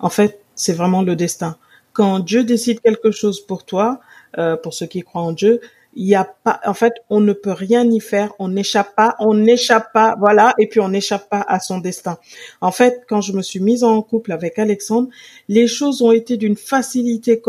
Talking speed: 220 wpm